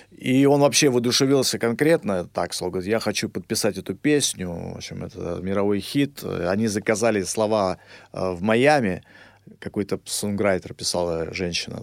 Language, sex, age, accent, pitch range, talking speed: Russian, male, 40-59, native, 100-145 Hz, 140 wpm